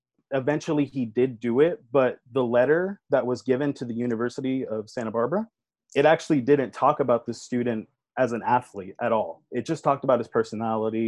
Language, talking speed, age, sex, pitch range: English, 190 wpm, 20-39, male, 120-140 Hz